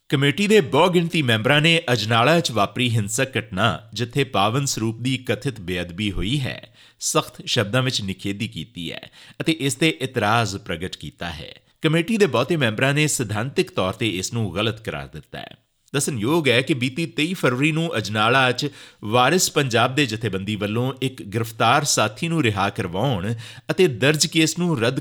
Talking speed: 155 wpm